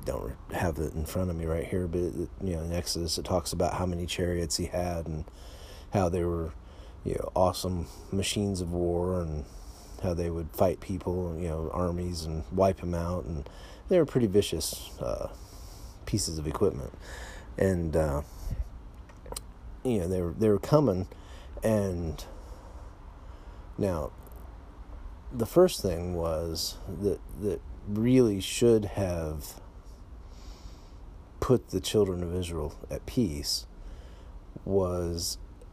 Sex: male